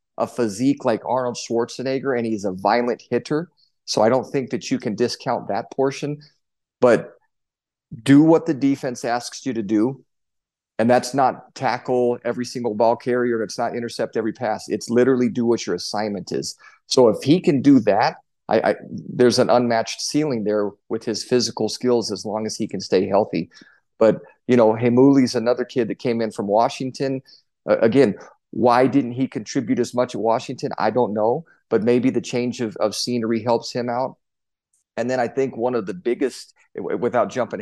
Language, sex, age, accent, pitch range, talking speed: English, male, 40-59, American, 110-130 Hz, 185 wpm